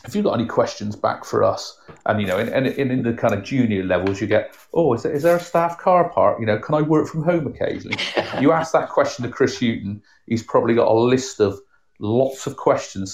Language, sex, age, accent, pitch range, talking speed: English, male, 40-59, British, 100-125 Hz, 245 wpm